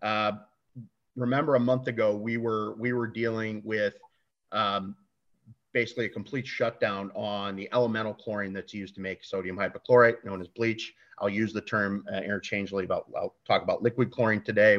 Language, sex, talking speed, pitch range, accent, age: English, male, 170 wpm, 100-120 Hz, American, 40-59